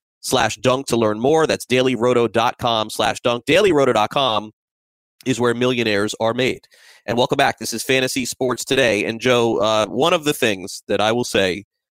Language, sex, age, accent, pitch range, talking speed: English, male, 30-49, American, 100-125 Hz, 170 wpm